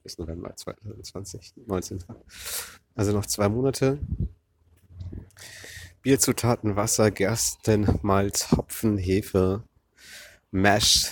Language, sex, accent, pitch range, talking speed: English, male, German, 85-110 Hz, 75 wpm